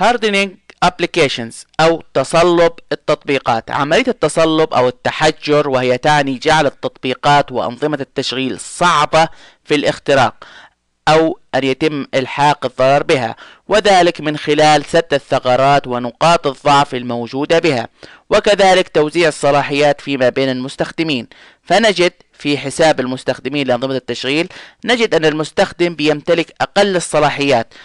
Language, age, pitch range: Arabic, 20-39, 130-165 Hz